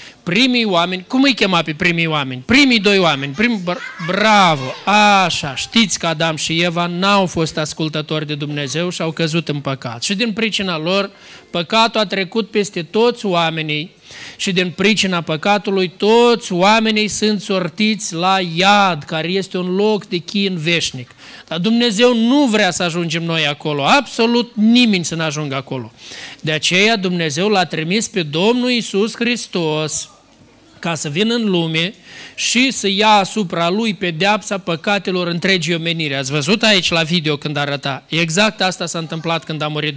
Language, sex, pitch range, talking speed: Romanian, male, 165-215 Hz, 160 wpm